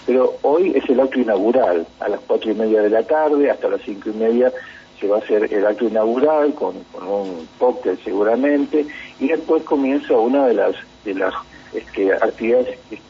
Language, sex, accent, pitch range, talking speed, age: Spanish, male, Argentinian, 110-150 Hz, 180 wpm, 50-69